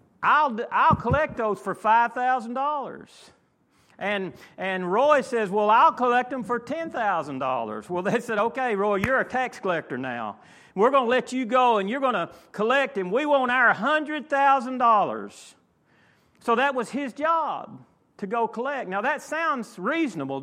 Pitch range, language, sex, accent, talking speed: 200-275 Hz, English, male, American, 180 wpm